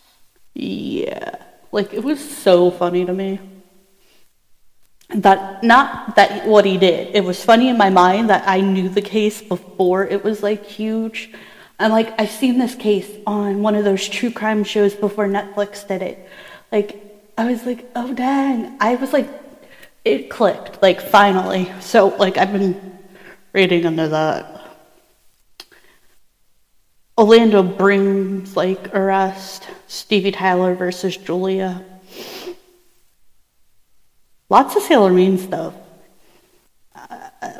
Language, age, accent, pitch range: English, 30-49, American, 185-220 Hz